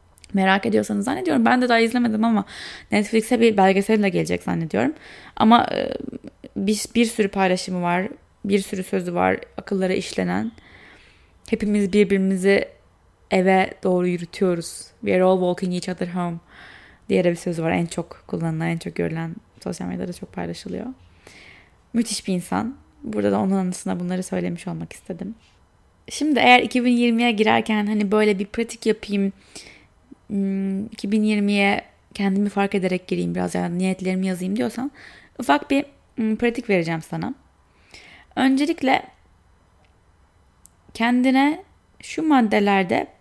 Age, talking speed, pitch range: 10-29, 125 wpm, 170-220 Hz